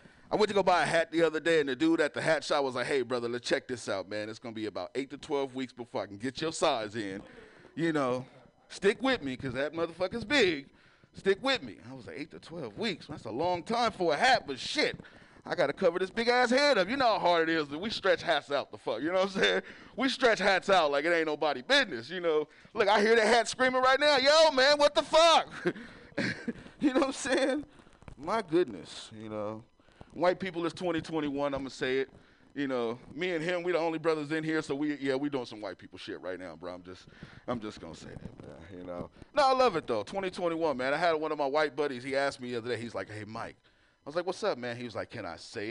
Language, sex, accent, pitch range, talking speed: English, male, American, 130-210 Hz, 270 wpm